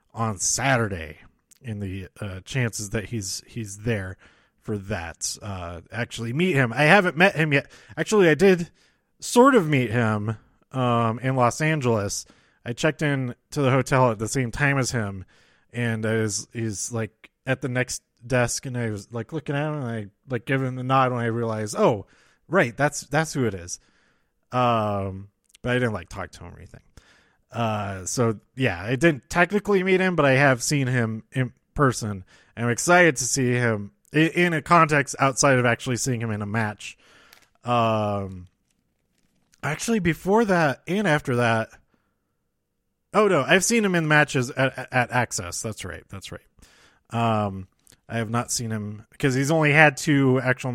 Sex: male